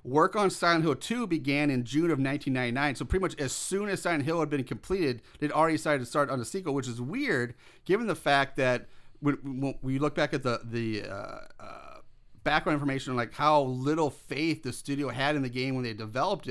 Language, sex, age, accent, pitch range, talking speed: English, male, 30-49, American, 125-150 Hz, 220 wpm